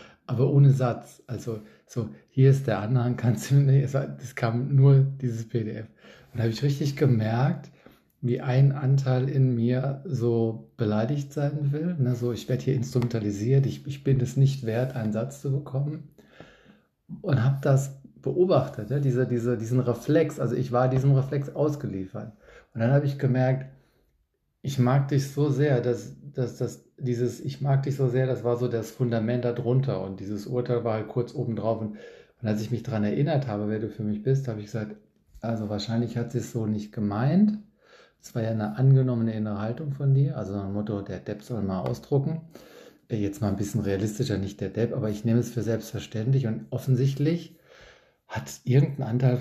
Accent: German